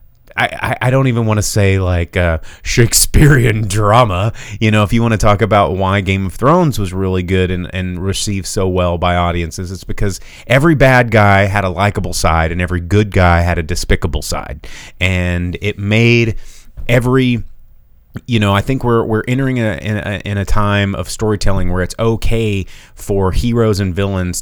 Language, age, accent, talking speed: English, 30-49, American, 185 wpm